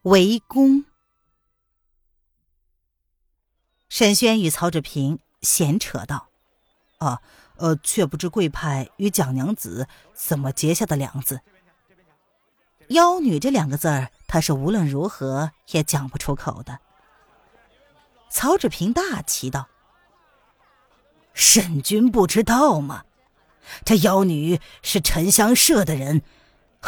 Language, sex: Chinese, female